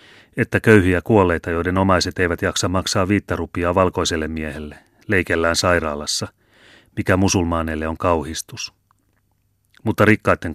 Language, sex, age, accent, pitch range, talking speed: Finnish, male, 30-49, native, 85-100 Hz, 110 wpm